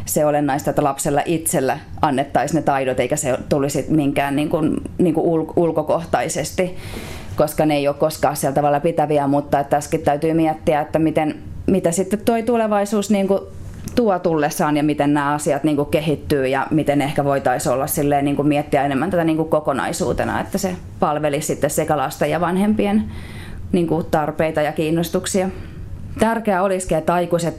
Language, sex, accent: Finnish, female, native